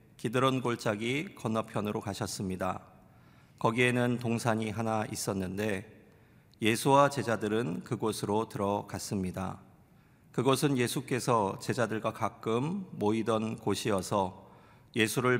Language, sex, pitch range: Korean, male, 105-125 Hz